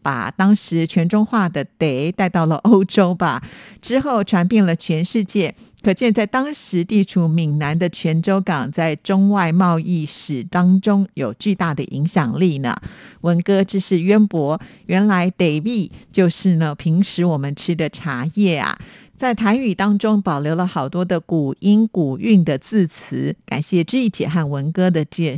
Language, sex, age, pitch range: Chinese, female, 50-69, 165-210 Hz